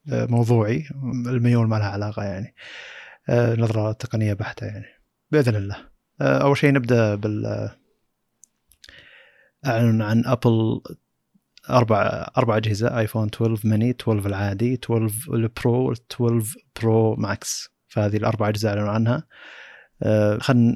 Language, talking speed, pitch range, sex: Arabic, 105 wpm, 105-120 Hz, male